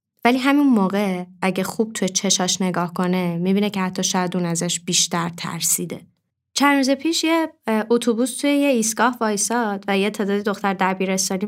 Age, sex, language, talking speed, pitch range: 20-39, female, Persian, 160 wpm, 180-220 Hz